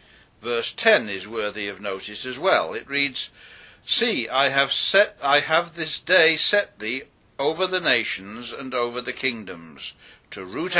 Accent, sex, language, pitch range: British, male, English, 125-160 Hz